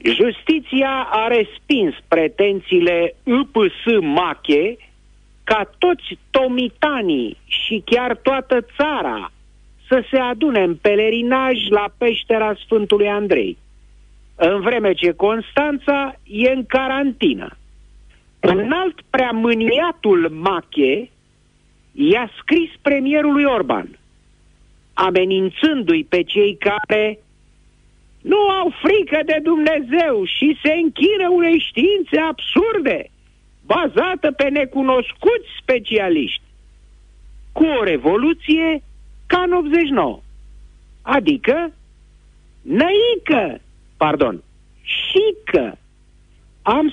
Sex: male